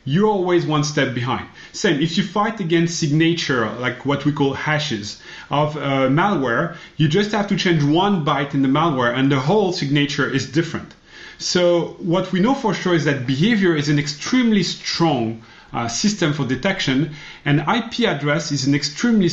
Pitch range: 130-175 Hz